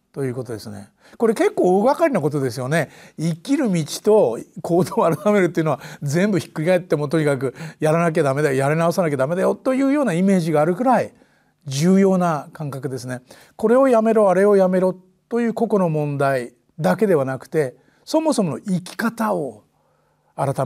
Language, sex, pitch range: Japanese, male, 155-220 Hz